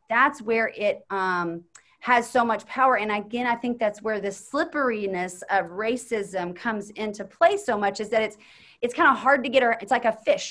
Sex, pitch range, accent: female, 205-255 Hz, American